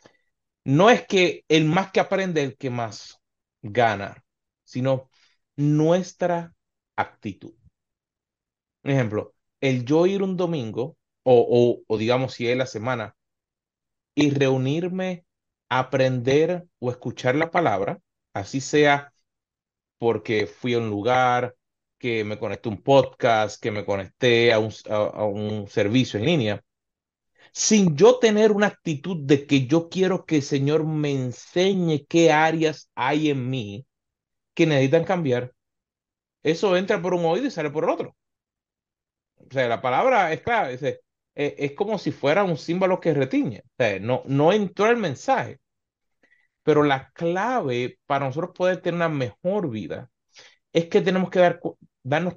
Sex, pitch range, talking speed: male, 125-175 Hz, 150 wpm